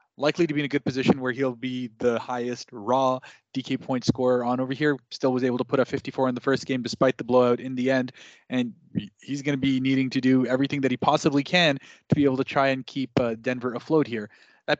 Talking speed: 245 wpm